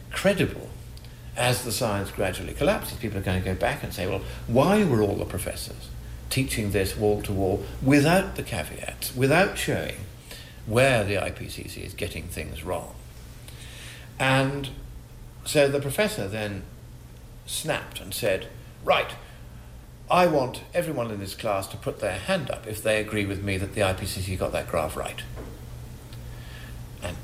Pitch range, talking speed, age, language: 95-130 Hz, 150 wpm, 50-69, English